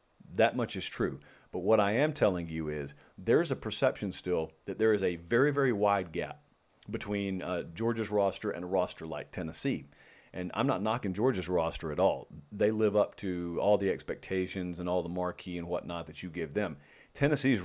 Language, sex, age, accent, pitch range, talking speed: English, male, 40-59, American, 90-115 Hz, 195 wpm